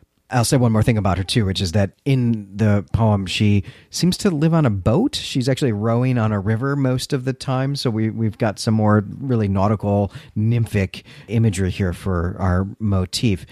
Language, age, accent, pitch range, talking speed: English, 40-59, American, 95-120 Hz, 200 wpm